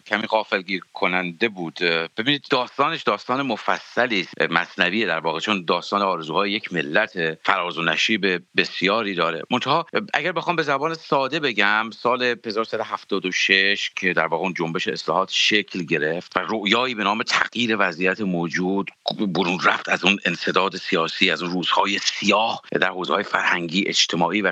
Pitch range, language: 95-130 Hz, English